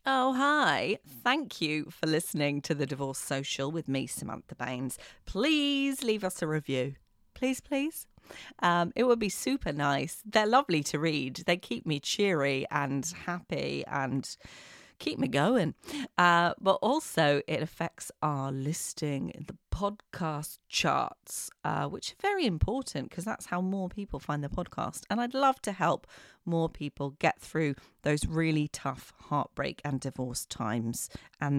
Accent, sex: British, female